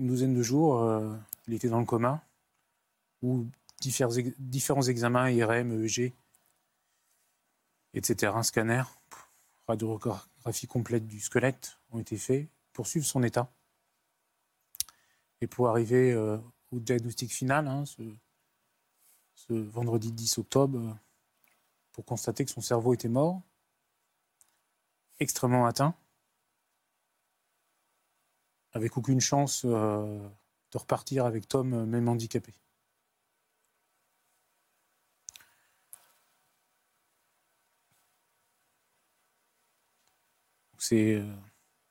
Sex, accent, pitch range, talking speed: male, French, 115-130 Hz, 95 wpm